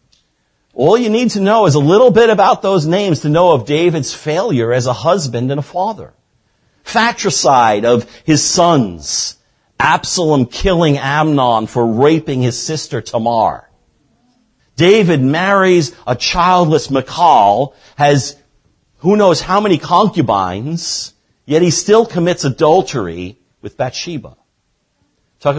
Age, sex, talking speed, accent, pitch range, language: 50-69, male, 125 wpm, American, 125-200 Hz, English